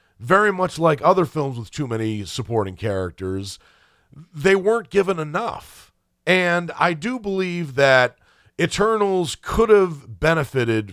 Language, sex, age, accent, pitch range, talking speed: English, male, 40-59, American, 115-165 Hz, 125 wpm